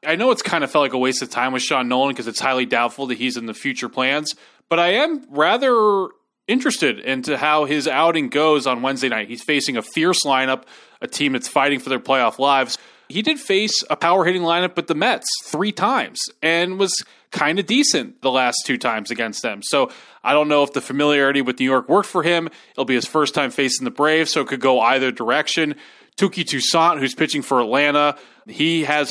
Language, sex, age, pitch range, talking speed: English, male, 20-39, 130-165 Hz, 220 wpm